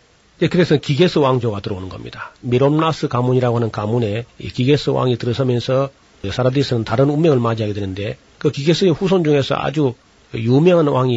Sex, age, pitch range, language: male, 40-59, 115-150 Hz, Korean